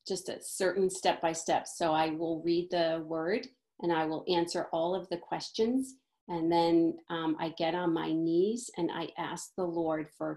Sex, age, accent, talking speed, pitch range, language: female, 40-59, American, 185 wpm, 170-205 Hz, English